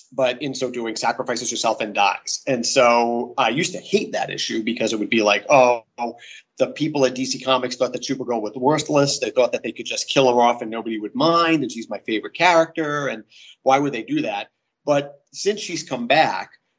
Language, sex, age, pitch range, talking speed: English, male, 30-49, 115-145 Hz, 220 wpm